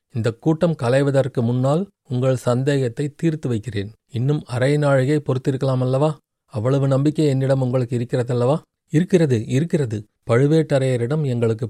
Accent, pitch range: native, 120-145 Hz